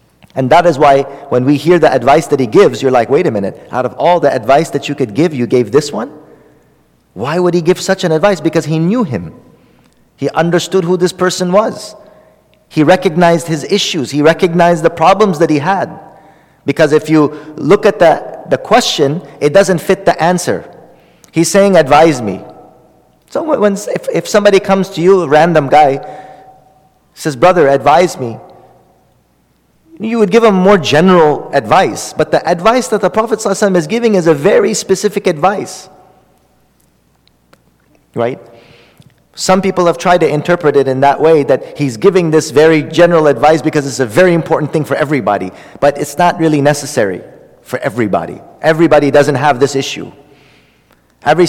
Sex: male